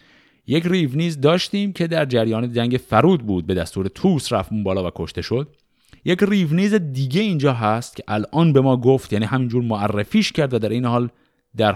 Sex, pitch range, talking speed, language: male, 105-155 Hz, 185 wpm, Persian